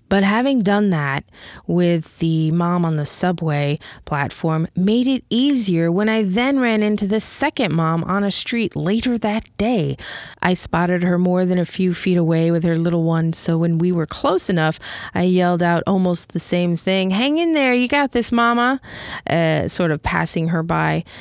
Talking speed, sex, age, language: 190 wpm, female, 20-39, English